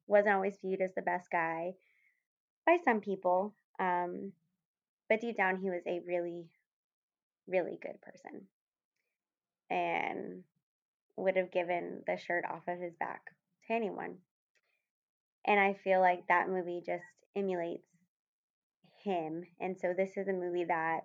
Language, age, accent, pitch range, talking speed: English, 20-39, American, 175-195 Hz, 140 wpm